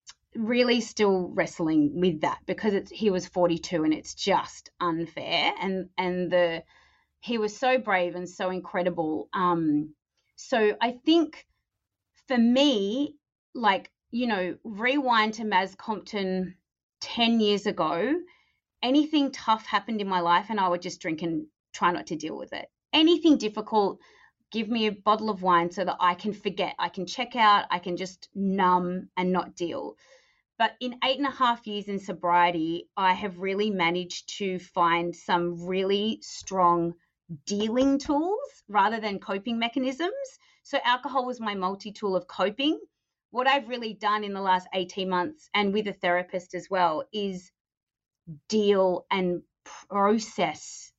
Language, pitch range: English, 180-230 Hz